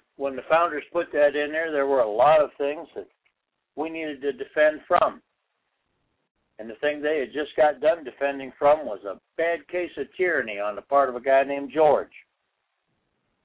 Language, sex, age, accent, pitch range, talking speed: English, male, 60-79, American, 140-170 Hz, 190 wpm